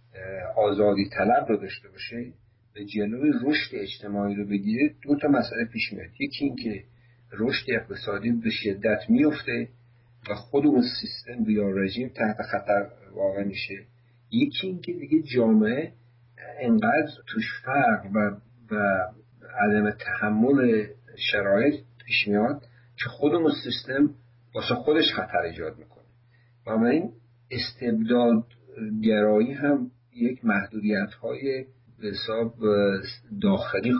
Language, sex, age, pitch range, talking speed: Persian, male, 50-69, 105-125 Hz, 115 wpm